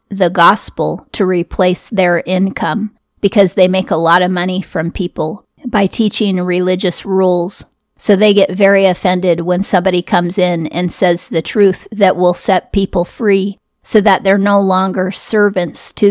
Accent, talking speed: American, 170 wpm